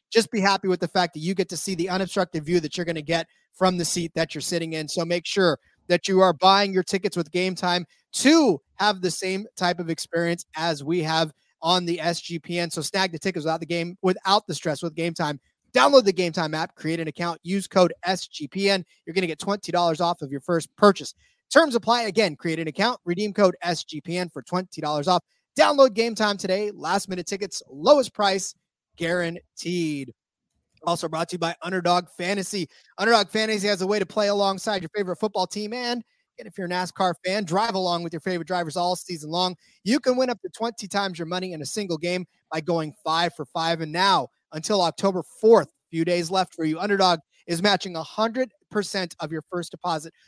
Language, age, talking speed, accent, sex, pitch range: English, 30-49, 215 wpm, American, male, 165-195 Hz